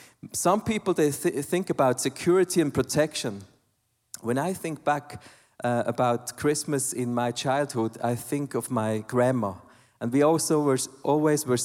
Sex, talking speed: male, 150 wpm